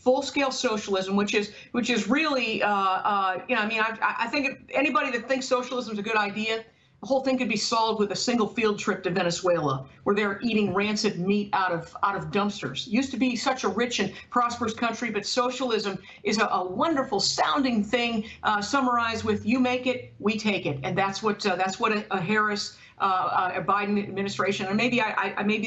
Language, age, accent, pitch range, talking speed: English, 50-69, American, 195-235 Hz, 210 wpm